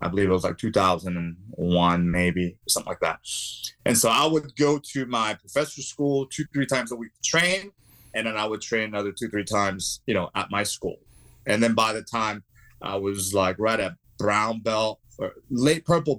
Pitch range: 110-145 Hz